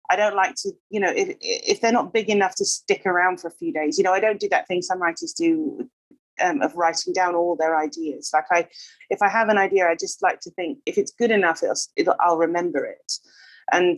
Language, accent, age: English, British, 30-49